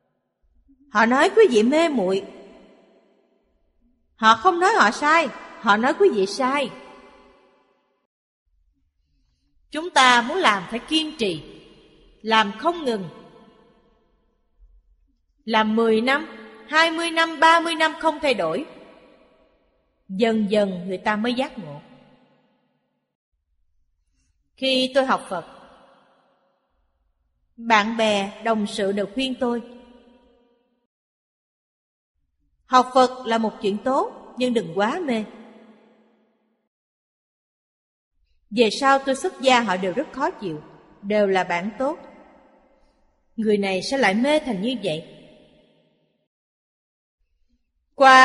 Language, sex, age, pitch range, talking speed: Vietnamese, female, 30-49, 185-265 Hz, 110 wpm